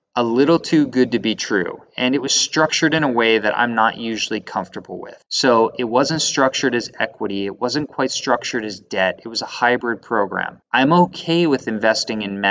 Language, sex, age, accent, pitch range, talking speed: English, male, 20-39, American, 105-135 Hz, 200 wpm